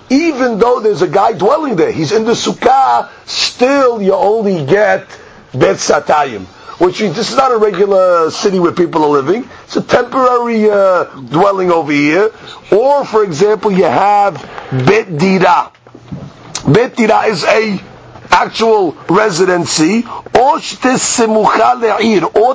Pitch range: 175-235 Hz